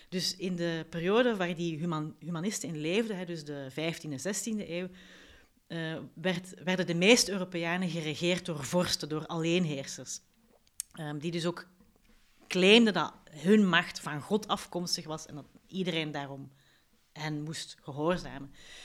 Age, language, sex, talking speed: 40-59, Dutch, female, 135 wpm